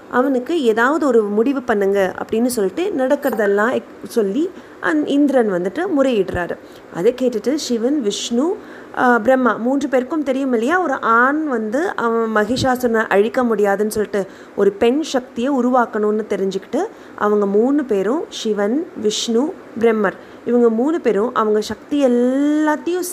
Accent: native